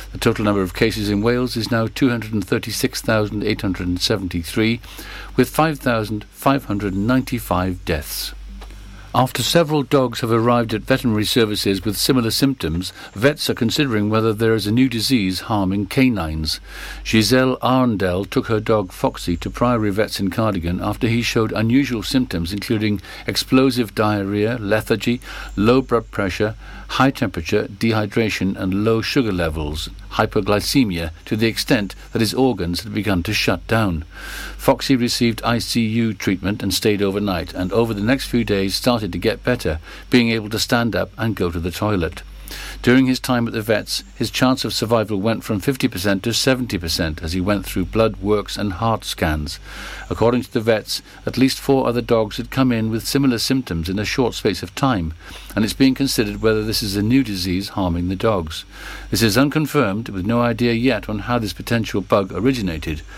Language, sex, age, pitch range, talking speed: English, male, 50-69, 95-120 Hz, 165 wpm